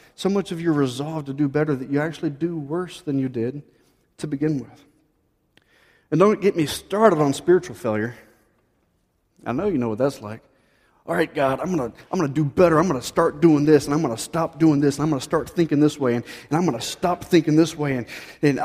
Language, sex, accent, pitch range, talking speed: English, male, American, 140-180 Hz, 245 wpm